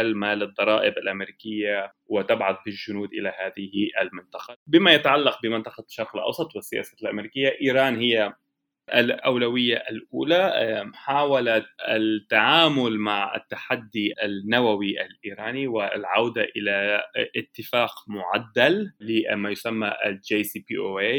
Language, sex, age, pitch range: Arabic, male, 20-39, 105-135 Hz